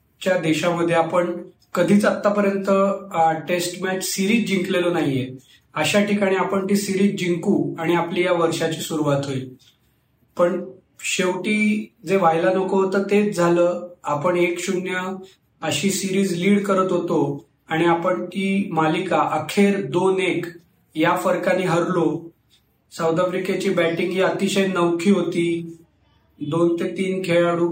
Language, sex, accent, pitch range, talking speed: Marathi, male, native, 165-195 Hz, 90 wpm